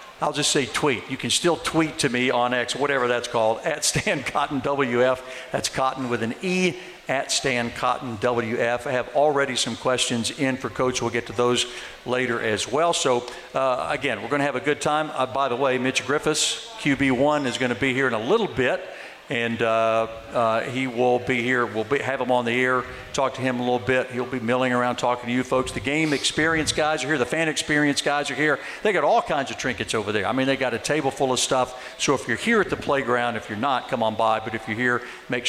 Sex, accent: male, American